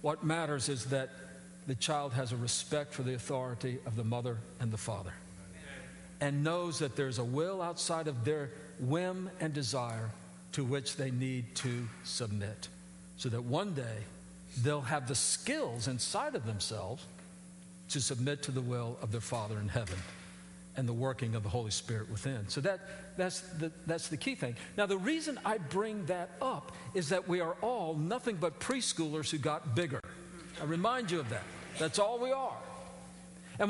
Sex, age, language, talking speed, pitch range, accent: male, 50-69, English, 175 wpm, 135-220 Hz, American